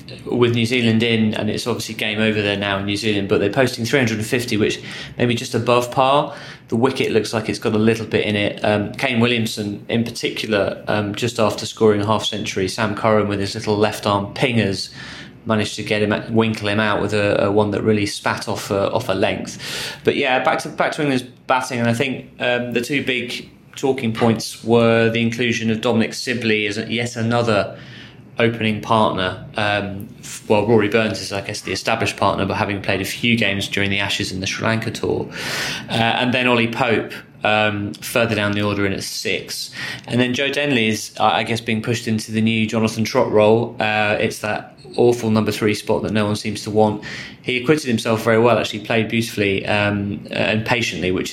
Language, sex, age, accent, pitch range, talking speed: English, male, 20-39, British, 105-115 Hz, 210 wpm